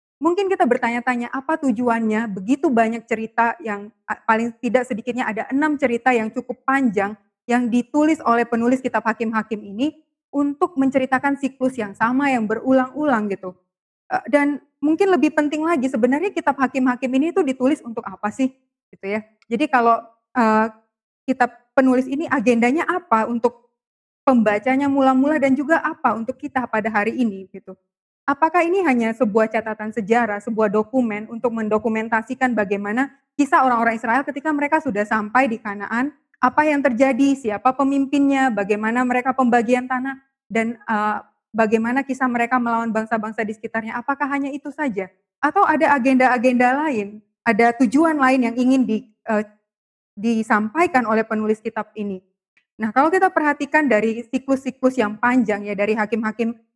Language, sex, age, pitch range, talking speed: Indonesian, female, 20-39, 220-270 Hz, 145 wpm